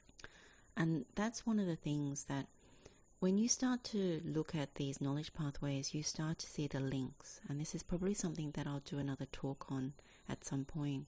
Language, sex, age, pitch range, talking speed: English, female, 40-59, 140-170 Hz, 195 wpm